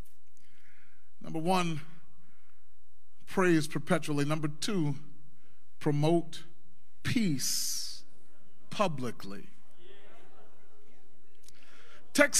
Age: 30-49